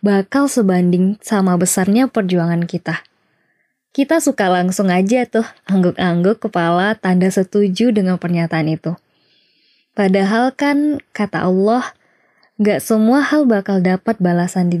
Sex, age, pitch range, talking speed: female, 20-39, 180-230 Hz, 120 wpm